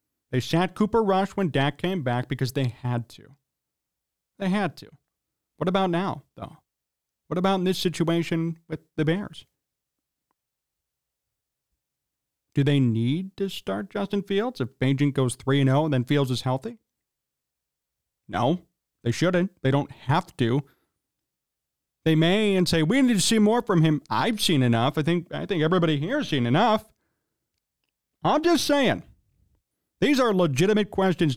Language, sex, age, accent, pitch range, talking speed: English, male, 30-49, American, 135-170 Hz, 155 wpm